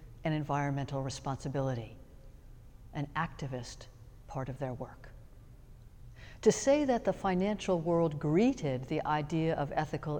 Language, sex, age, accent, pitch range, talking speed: English, female, 60-79, American, 125-175 Hz, 120 wpm